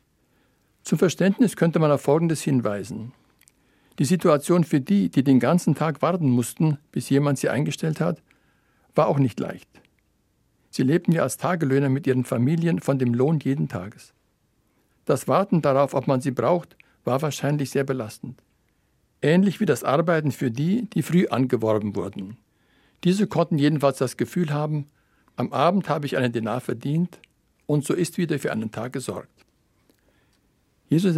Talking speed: 160 wpm